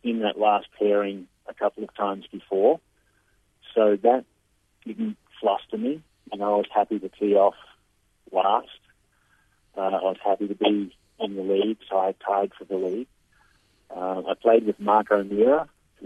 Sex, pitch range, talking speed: male, 95-105 Hz, 165 wpm